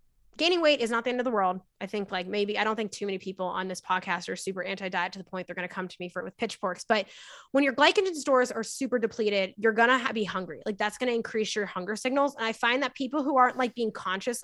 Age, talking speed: 20-39, 285 wpm